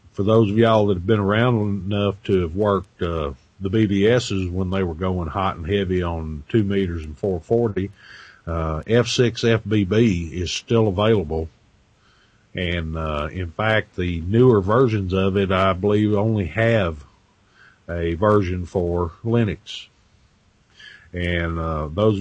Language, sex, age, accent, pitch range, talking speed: English, male, 50-69, American, 90-110 Hz, 140 wpm